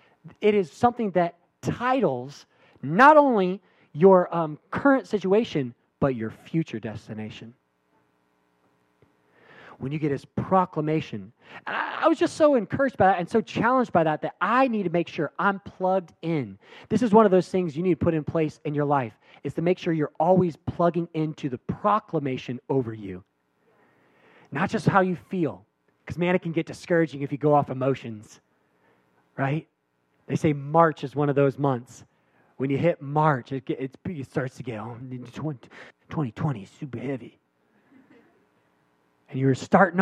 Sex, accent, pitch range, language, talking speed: male, American, 115-175 Hz, English, 170 wpm